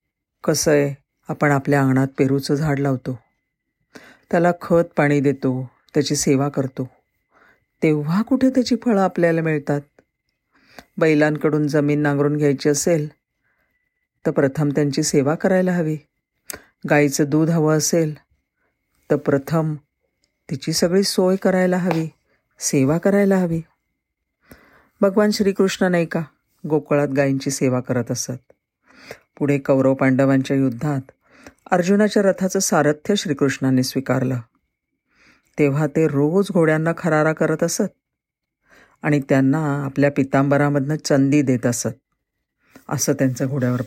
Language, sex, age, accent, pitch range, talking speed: Marathi, female, 50-69, native, 135-165 Hz, 110 wpm